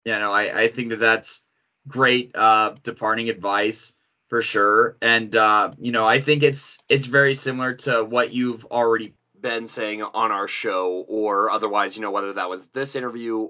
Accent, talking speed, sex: American, 185 wpm, male